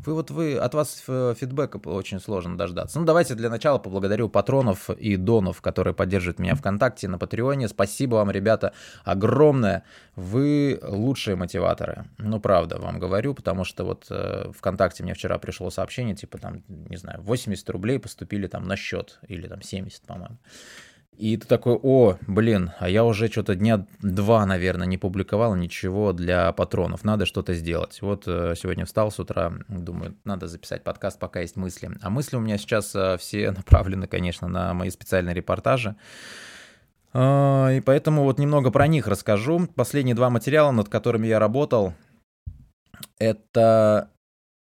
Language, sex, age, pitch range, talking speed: Russian, male, 20-39, 95-120 Hz, 155 wpm